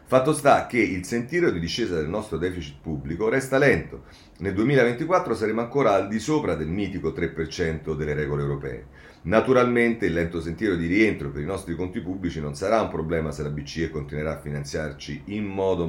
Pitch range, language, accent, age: 75-105 Hz, Italian, native, 40-59